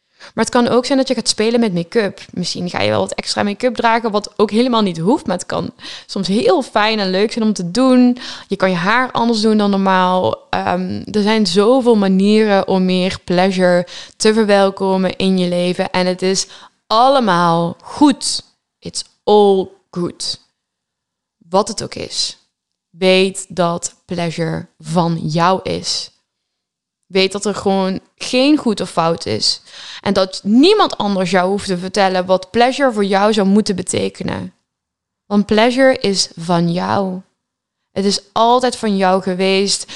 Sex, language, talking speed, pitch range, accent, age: female, Dutch, 165 wpm, 185-220 Hz, Dutch, 10-29